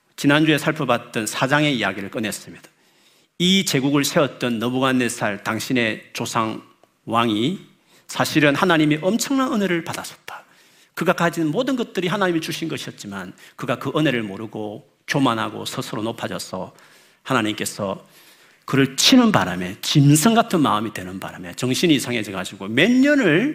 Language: Korean